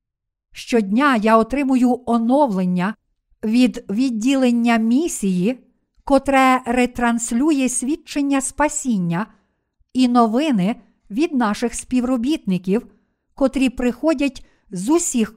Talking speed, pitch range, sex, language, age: 80 wpm, 220-265 Hz, female, Ukrainian, 50-69